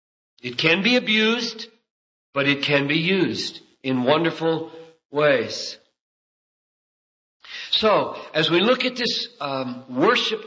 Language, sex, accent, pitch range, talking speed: English, male, American, 150-195 Hz, 115 wpm